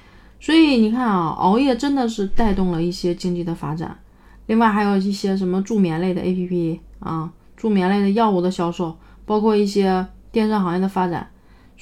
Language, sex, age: Chinese, female, 30-49